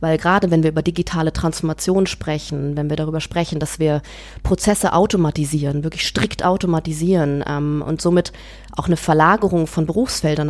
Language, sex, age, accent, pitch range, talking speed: German, female, 30-49, German, 155-185 Hz, 155 wpm